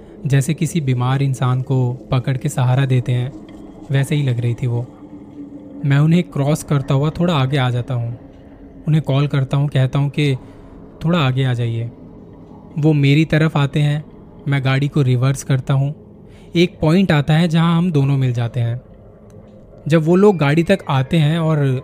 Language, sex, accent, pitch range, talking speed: Hindi, male, native, 130-155 Hz, 180 wpm